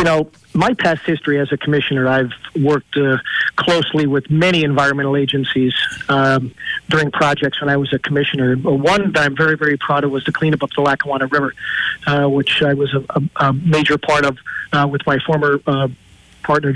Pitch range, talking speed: 140-170 Hz, 190 wpm